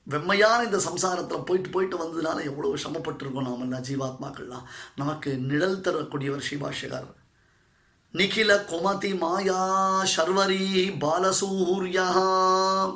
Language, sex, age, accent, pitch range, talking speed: Tamil, male, 20-39, native, 165-190 Hz, 95 wpm